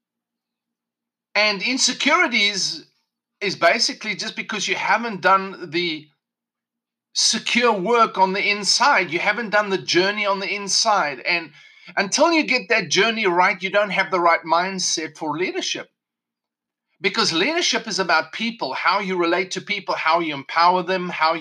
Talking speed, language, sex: 150 wpm, English, male